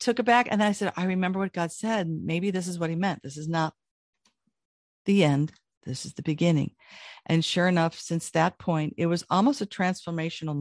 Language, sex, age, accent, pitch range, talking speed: English, female, 50-69, American, 155-185 Hz, 215 wpm